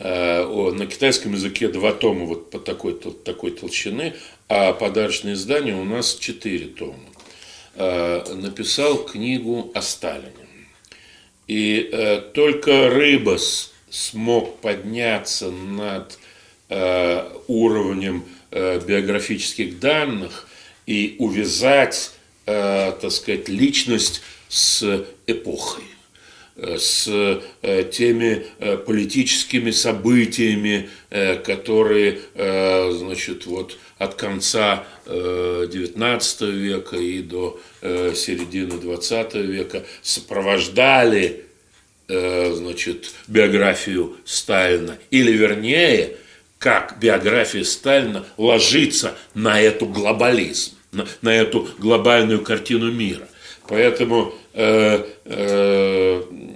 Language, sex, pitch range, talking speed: Russian, male, 95-115 Hz, 75 wpm